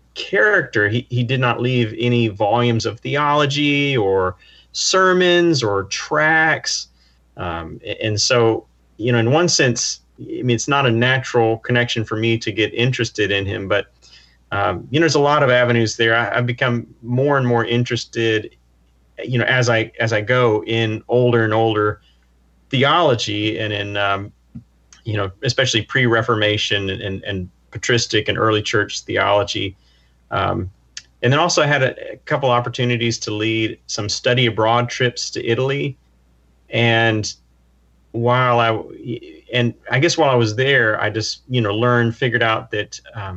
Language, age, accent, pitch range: English, 30-49, American, 100-120 Hz